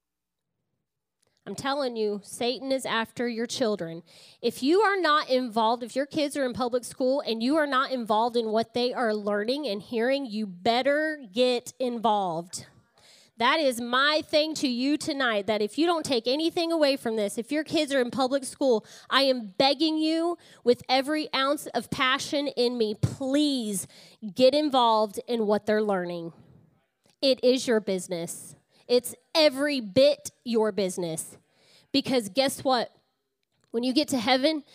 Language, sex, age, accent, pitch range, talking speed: English, female, 20-39, American, 225-285 Hz, 160 wpm